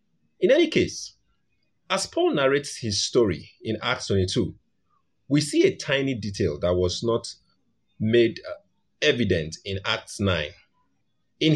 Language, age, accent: English, 30-49, Nigerian